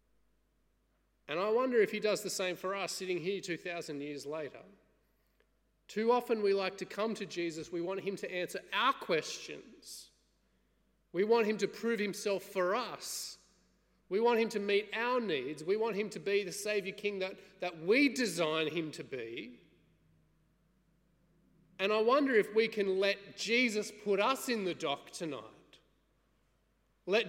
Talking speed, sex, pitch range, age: 165 wpm, male, 185-220 Hz, 30-49